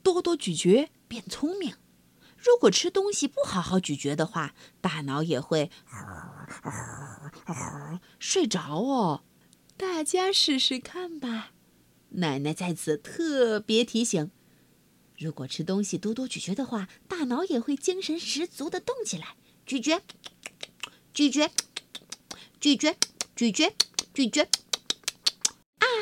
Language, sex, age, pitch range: Chinese, female, 50-69, 195-325 Hz